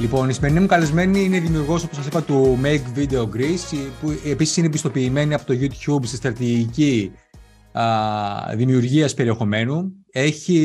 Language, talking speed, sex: Greek, 145 wpm, male